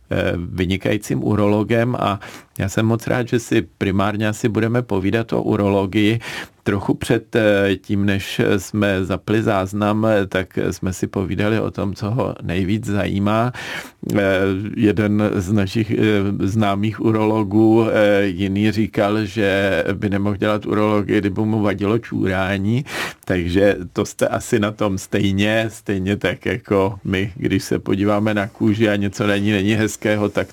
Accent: native